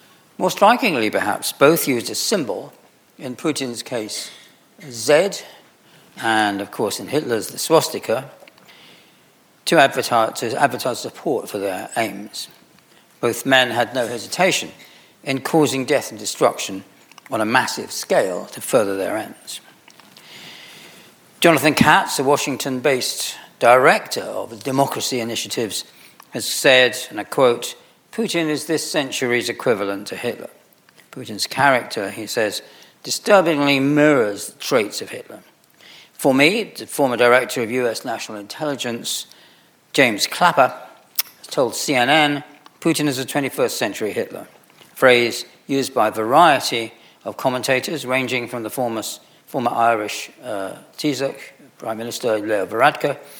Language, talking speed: English, 130 wpm